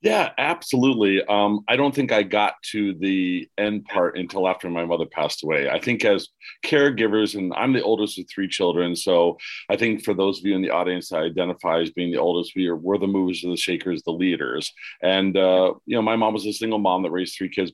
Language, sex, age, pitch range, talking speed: English, male, 40-59, 90-110 Hz, 225 wpm